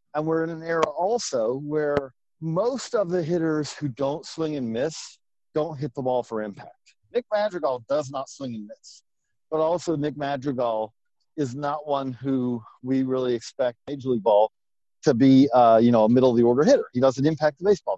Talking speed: 195 wpm